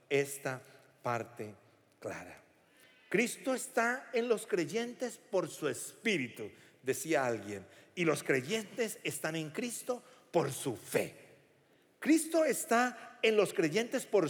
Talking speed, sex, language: 120 wpm, male, Spanish